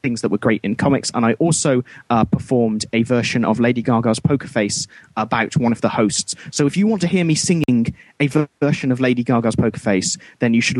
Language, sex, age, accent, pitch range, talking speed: English, male, 30-49, British, 120-160 Hz, 235 wpm